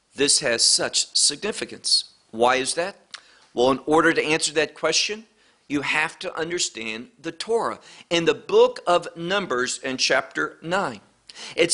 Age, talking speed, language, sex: 50-69, 150 wpm, English, male